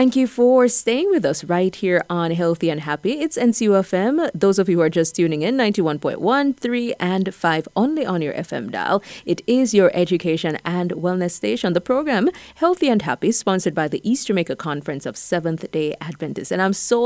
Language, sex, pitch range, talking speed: English, female, 165-235 Hz, 195 wpm